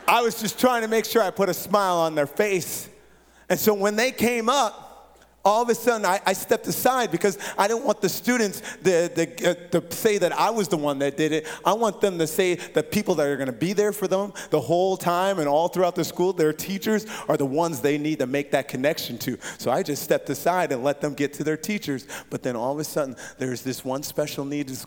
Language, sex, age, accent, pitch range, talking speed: English, male, 30-49, American, 140-180 Hz, 250 wpm